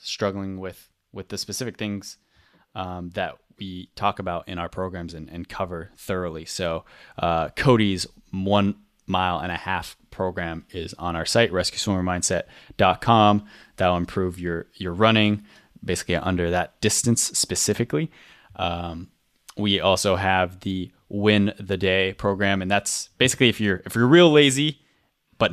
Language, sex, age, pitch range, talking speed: English, male, 20-39, 90-105 Hz, 145 wpm